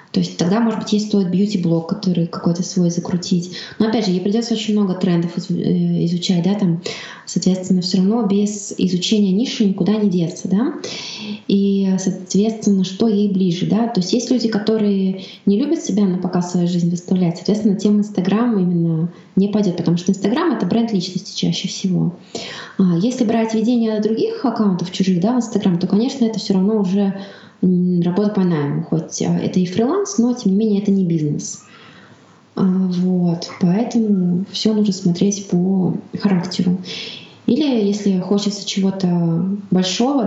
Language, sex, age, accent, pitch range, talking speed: Russian, female, 20-39, native, 185-215 Hz, 160 wpm